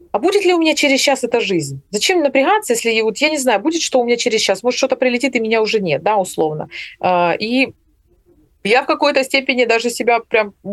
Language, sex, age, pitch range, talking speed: Ukrainian, female, 30-49, 205-270 Hz, 225 wpm